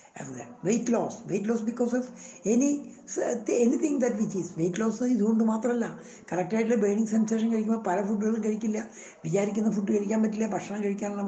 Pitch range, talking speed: 195-240 Hz, 160 wpm